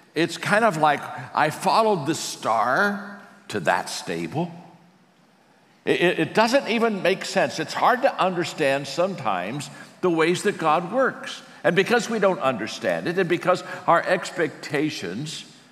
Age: 60-79